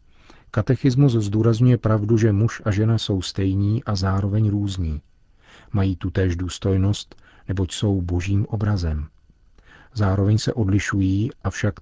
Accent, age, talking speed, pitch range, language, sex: native, 40-59, 120 wpm, 90-110 Hz, Czech, male